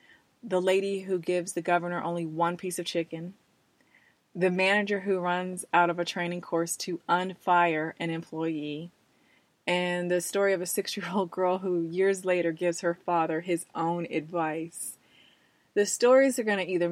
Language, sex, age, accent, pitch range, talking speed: English, female, 20-39, American, 165-185 Hz, 165 wpm